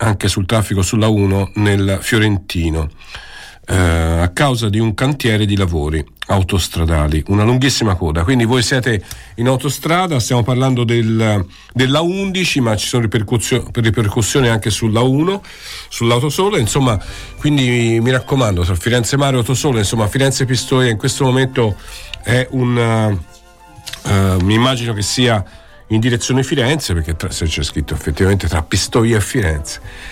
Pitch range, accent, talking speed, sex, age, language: 95-125 Hz, native, 145 wpm, male, 50-69, Italian